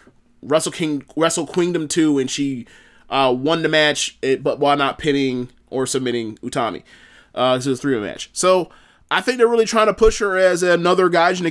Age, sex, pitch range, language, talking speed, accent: 20-39, male, 135-170 Hz, English, 190 wpm, American